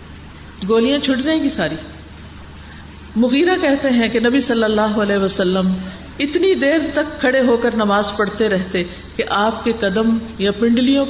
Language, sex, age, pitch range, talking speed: Urdu, female, 50-69, 180-260 Hz, 155 wpm